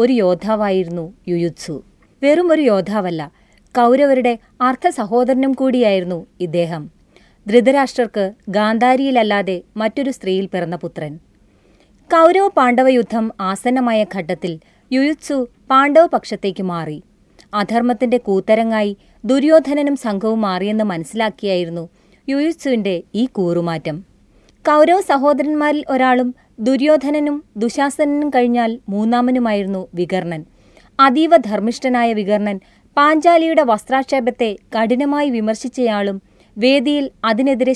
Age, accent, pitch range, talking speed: 30-49, native, 195-265 Hz, 75 wpm